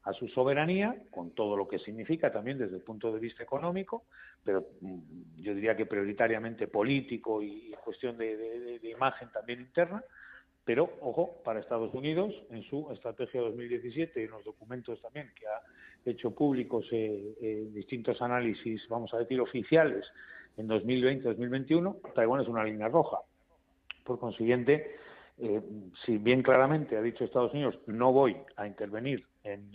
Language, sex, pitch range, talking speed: Spanish, male, 110-135 Hz, 155 wpm